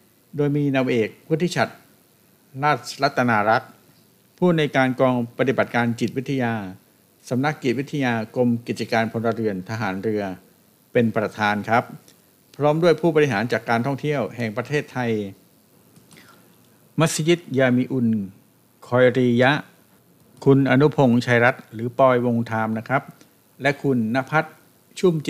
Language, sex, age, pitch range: Thai, male, 60-79, 115-140 Hz